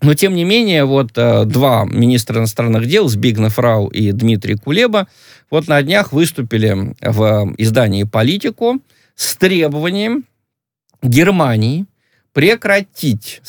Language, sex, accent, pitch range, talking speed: Russian, male, native, 110-155 Hz, 110 wpm